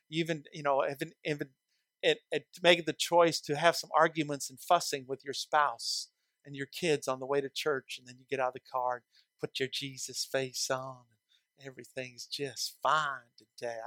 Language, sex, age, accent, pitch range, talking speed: English, male, 50-69, American, 140-195 Hz, 180 wpm